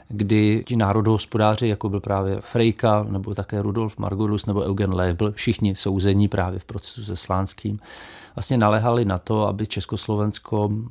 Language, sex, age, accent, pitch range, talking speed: Czech, male, 40-59, native, 100-110 Hz, 150 wpm